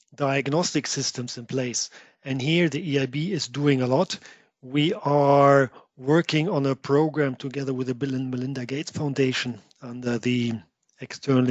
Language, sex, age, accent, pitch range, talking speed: English, male, 40-59, German, 130-150 Hz, 150 wpm